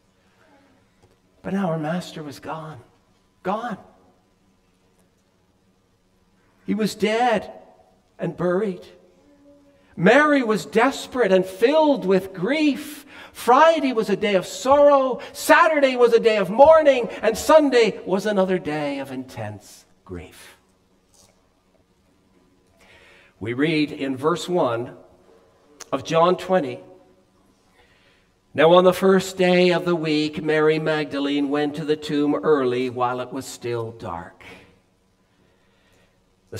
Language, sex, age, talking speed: English, male, 60-79, 110 wpm